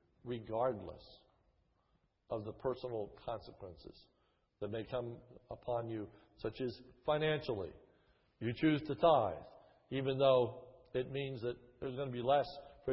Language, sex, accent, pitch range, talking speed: English, male, American, 115-140 Hz, 130 wpm